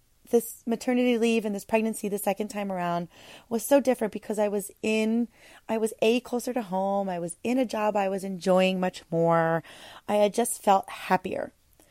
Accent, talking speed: American, 190 wpm